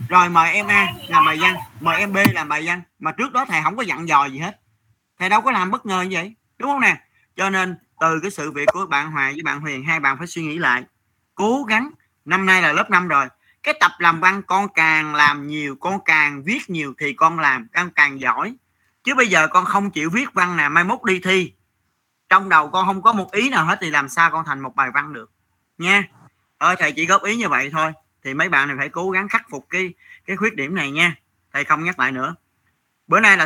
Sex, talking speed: male, 255 wpm